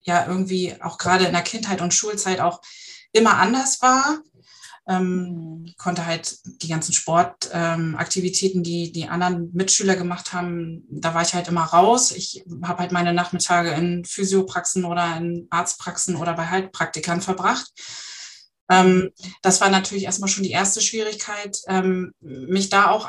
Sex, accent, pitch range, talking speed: female, German, 175-215 Hz, 155 wpm